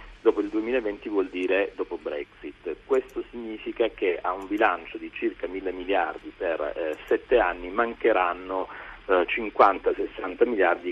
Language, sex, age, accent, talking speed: Italian, male, 50-69, native, 135 wpm